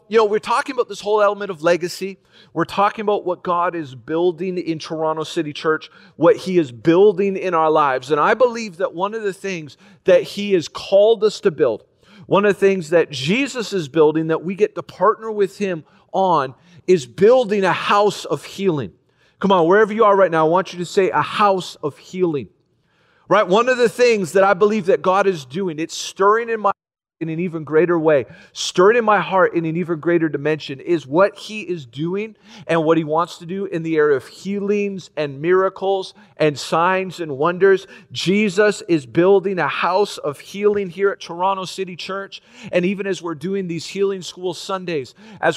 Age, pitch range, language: 40-59, 165-205 Hz, English